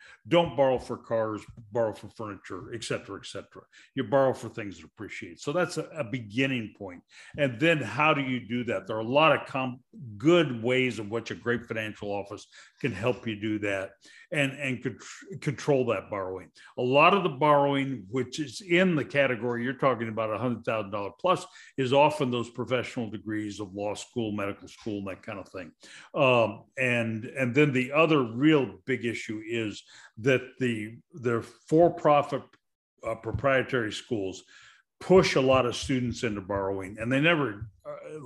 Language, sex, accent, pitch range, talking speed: English, male, American, 110-135 Hz, 175 wpm